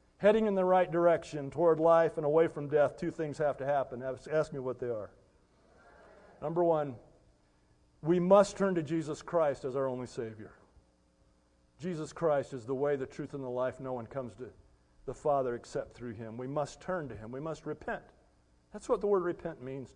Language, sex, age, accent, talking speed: English, male, 40-59, American, 200 wpm